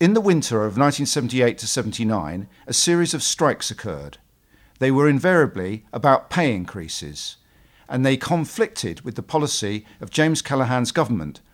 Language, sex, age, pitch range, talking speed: English, male, 50-69, 110-155 Hz, 145 wpm